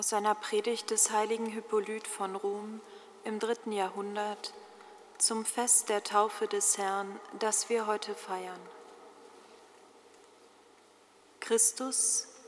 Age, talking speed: 40-59, 105 wpm